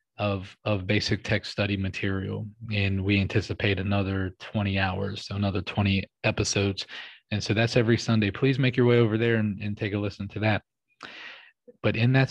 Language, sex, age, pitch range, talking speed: English, male, 20-39, 100-110 Hz, 180 wpm